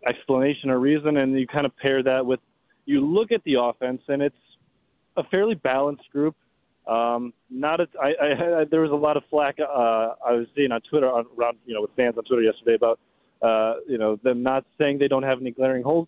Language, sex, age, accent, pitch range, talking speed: English, male, 20-39, American, 120-150 Hz, 210 wpm